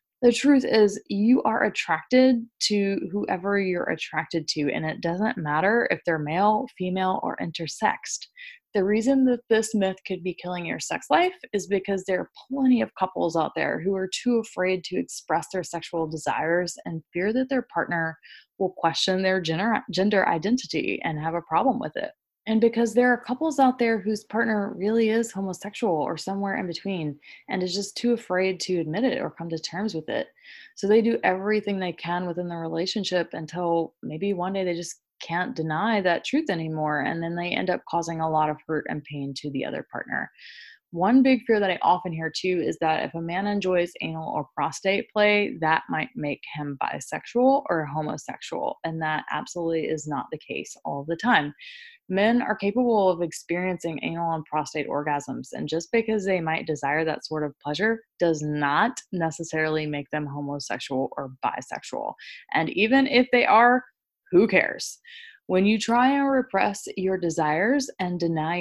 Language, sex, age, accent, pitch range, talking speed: English, female, 20-39, American, 165-225 Hz, 185 wpm